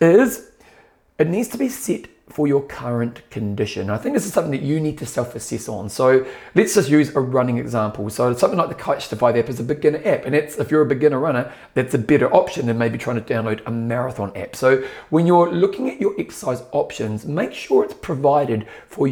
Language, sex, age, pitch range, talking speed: English, male, 30-49, 115-160 Hz, 225 wpm